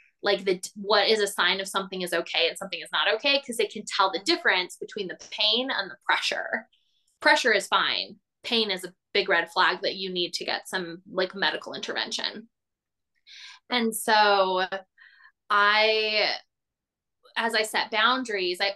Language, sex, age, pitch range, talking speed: English, female, 20-39, 195-265 Hz, 170 wpm